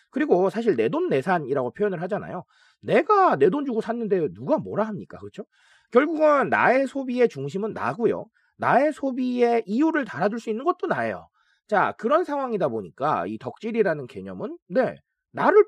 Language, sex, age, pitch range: Korean, male, 30-49, 195-325 Hz